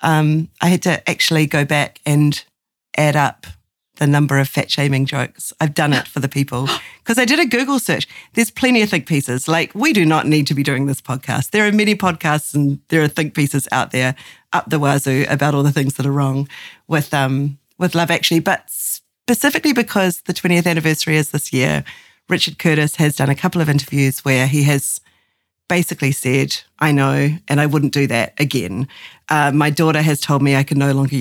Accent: Australian